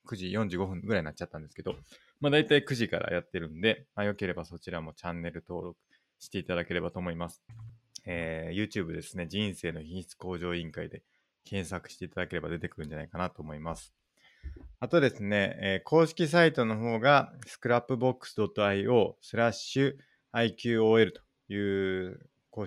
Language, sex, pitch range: Japanese, male, 90-115 Hz